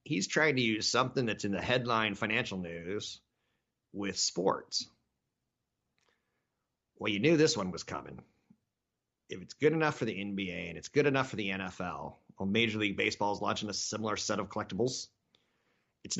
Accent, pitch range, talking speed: American, 95-120 Hz, 170 wpm